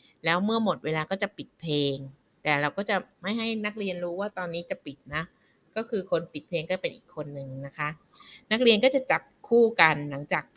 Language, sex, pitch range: Thai, female, 150-190 Hz